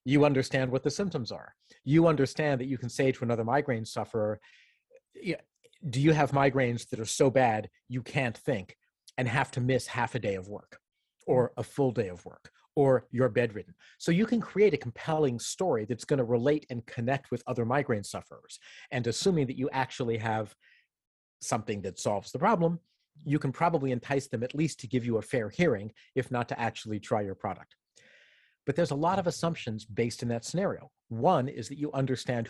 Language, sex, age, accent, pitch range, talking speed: English, male, 40-59, American, 115-145 Hz, 200 wpm